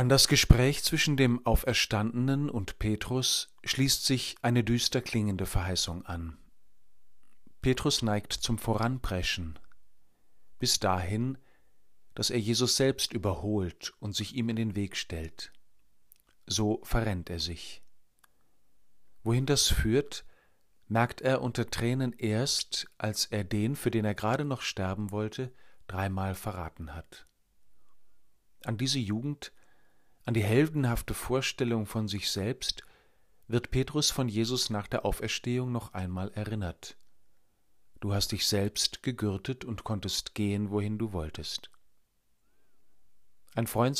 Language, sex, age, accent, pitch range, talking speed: German, male, 40-59, German, 100-125 Hz, 125 wpm